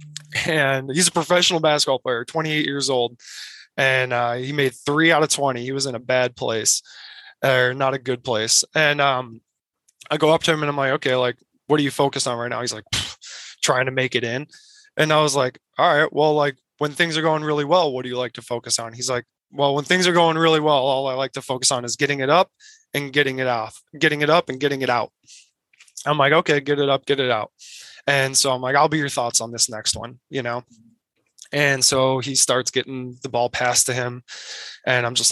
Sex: male